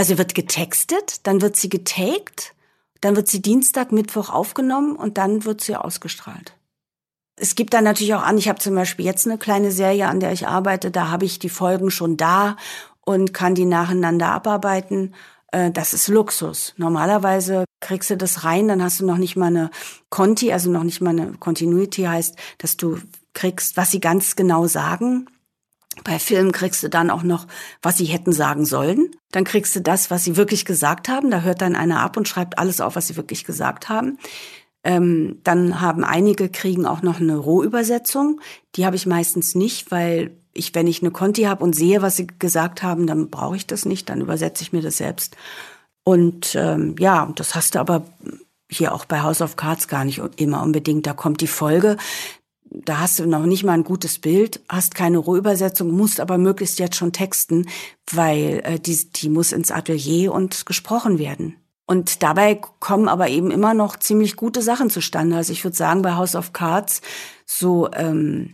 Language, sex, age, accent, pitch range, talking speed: German, female, 50-69, German, 170-200 Hz, 195 wpm